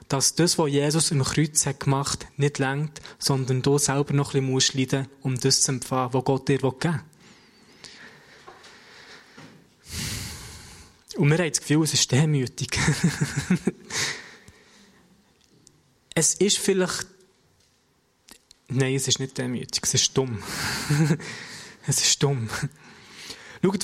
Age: 20-39